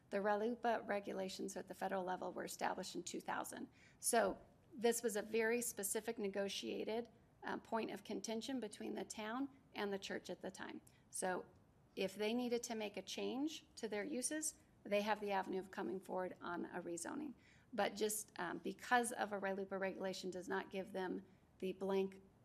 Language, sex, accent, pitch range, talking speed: English, female, American, 195-235 Hz, 175 wpm